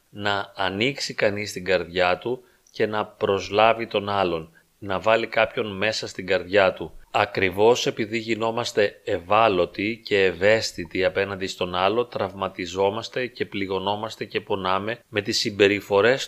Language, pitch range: Greek, 95-120 Hz